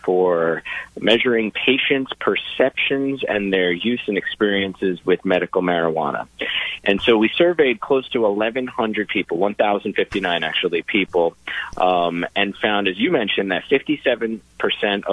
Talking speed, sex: 125 wpm, male